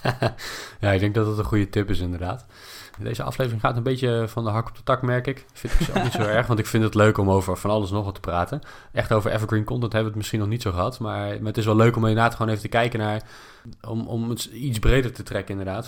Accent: Dutch